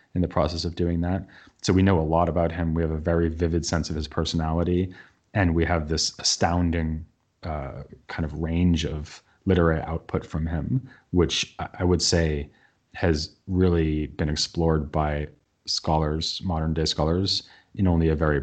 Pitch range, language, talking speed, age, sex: 80-90 Hz, English, 175 wpm, 30-49, male